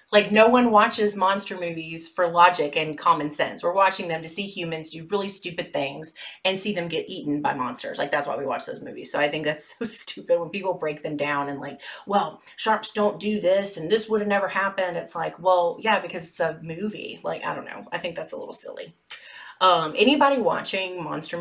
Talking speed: 225 wpm